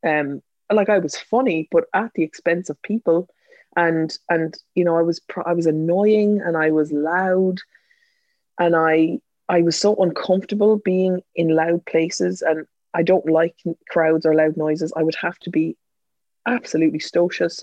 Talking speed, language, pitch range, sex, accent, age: 165 wpm, English, 150-185 Hz, female, Irish, 20-39